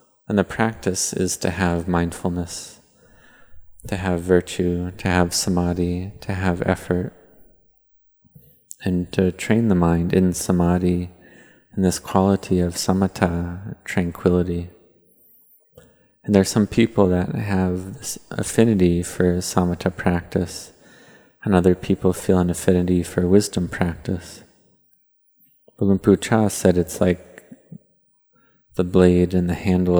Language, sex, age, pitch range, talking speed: English, male, 20-39, 90-95 Hz, 120 wpm